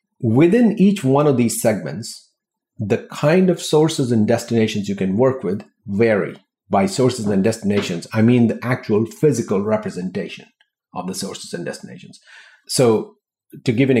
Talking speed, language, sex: 155 wpm, English, male